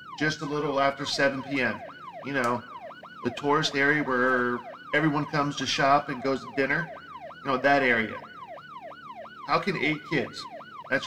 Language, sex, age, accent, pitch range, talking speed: English, male, 40-59, American, 135-160 Hz, 155 wpm